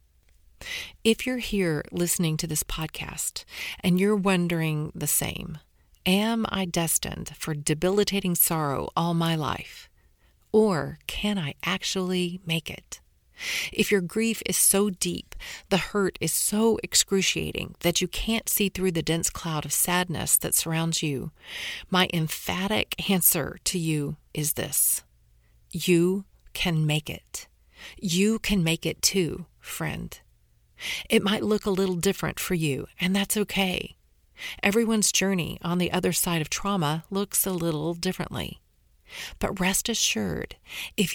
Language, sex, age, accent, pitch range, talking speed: English, female, 40-59, American, 160-200 Hz, 140 wpm